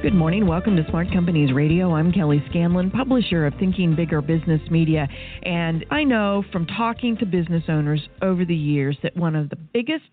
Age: 40-59